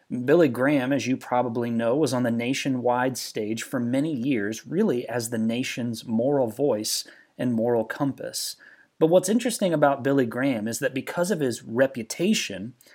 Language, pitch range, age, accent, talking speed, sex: English, 115-155 Hz, 30-49, American, 160 wpm, male